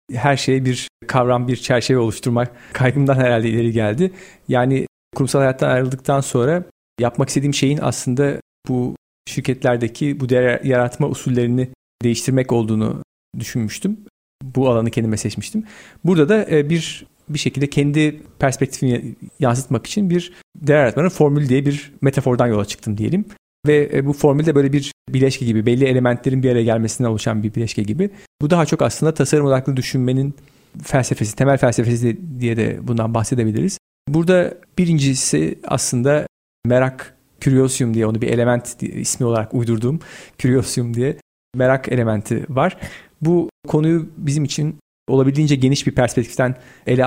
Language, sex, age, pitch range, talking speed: Turkish, male, 40-59, 120-145 Hz, 140 wpm